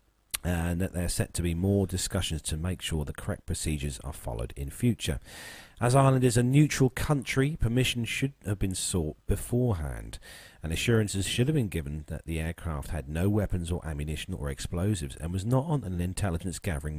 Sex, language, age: male, English, 40-59